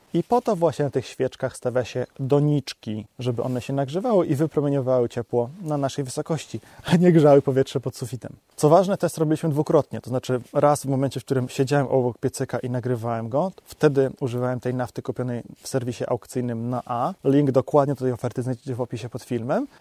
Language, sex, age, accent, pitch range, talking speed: Polish, male, 20-39, native, 125-165 Hz, 190 wpm